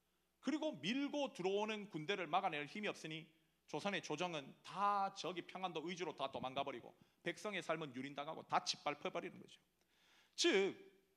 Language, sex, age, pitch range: Korean, male, 30-49, 170-260 Hz